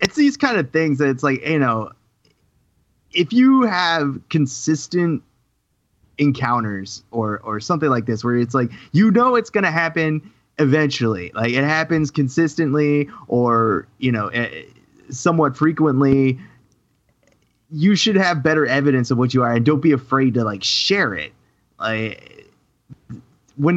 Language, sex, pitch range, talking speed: English, male, 130-170 Hz, 145 wpm